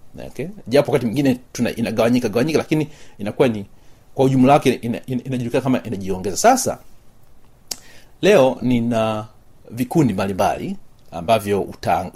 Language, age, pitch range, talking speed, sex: Swahili, 40-59, 110-145 Hz, 130 wpm, male